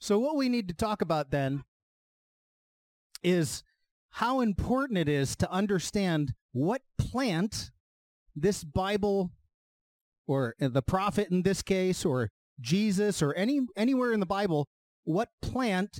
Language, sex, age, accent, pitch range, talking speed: English, male, 40-59, American, 150-215 Hz, 130 wpm